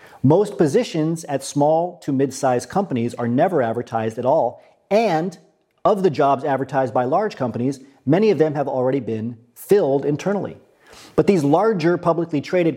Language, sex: English, male